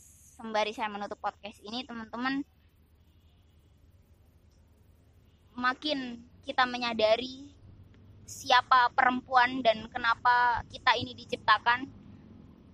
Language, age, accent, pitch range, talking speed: Indonesian, 20-39, native, 200-245 Hz, 75 wpm